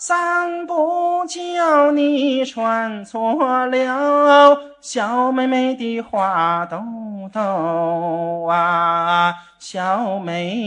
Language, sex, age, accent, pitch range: Chinese, male, 30-49, native, 195-295 Hz